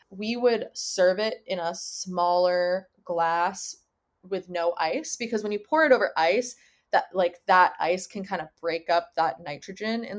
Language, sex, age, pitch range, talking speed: English, female, 20-39, 175-225 Hz, 175 wpm